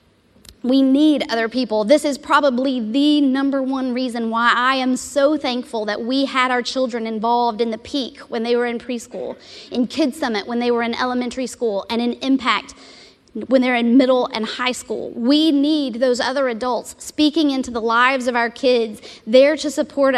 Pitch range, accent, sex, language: 230-270 Hz, American, female, English